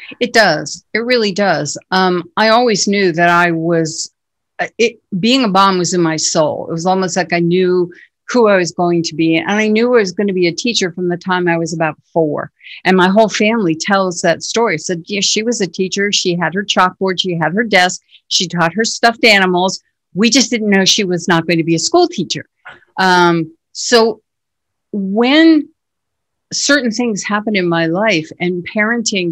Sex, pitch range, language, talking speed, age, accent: female, 170-215 Hz, English, 205 wpm, 50-69, American